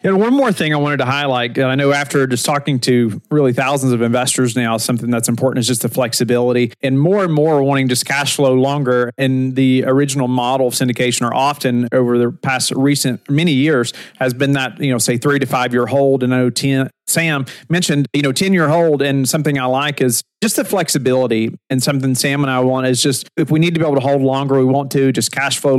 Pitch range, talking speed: 125-145 Hz, 235 wpm